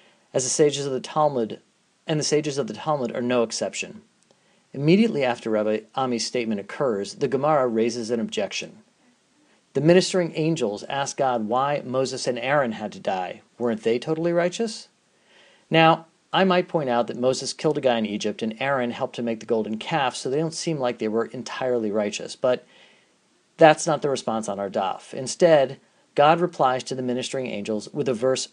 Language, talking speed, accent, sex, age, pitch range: English, 185 wpm, American, male, 40-59, 115-155 Hz